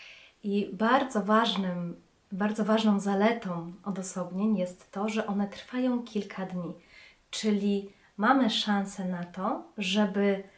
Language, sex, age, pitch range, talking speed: Polish, female, 20-39, 195-230 Hz, 115 wpm